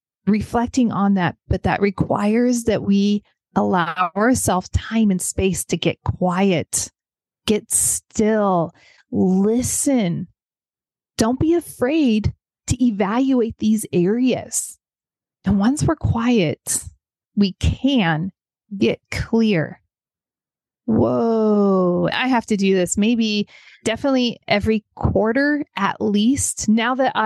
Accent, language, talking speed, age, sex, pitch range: American, English, 105 wpm, 30-49, female, 180-225 Hz